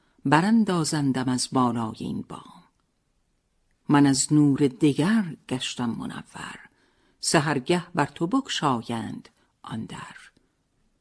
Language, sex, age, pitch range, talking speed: Persian, female, 50-69, 135-180 Hz, 100 wpm